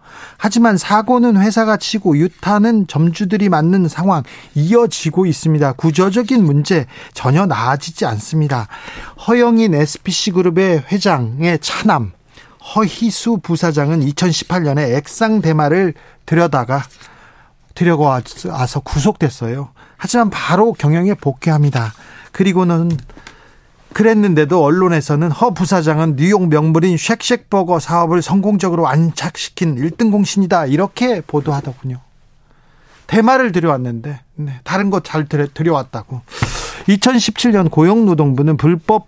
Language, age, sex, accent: Korean, 40-59, male, native